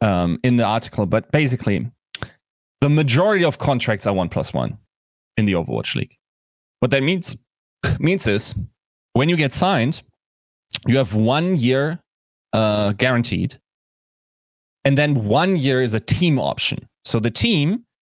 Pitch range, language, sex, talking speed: 110-145 Hz, English, male, 145 wpm